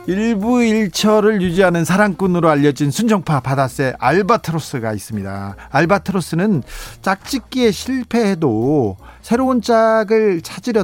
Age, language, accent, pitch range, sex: 40-59, Korean, native, 140-210 Hz, male